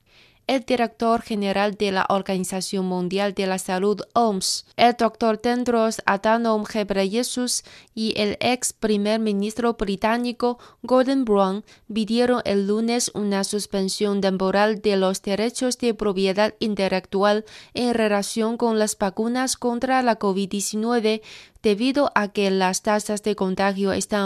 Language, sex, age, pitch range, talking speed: Spanish, female, 20-39, 195-230 Hz, 130 wpm